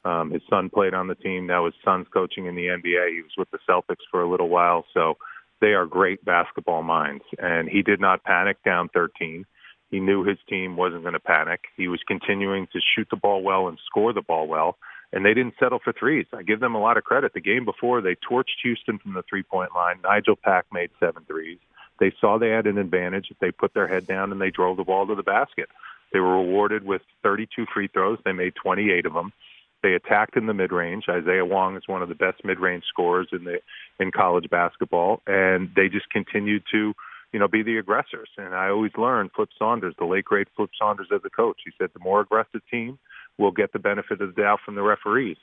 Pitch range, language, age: 90-105 Hz, English, 40-59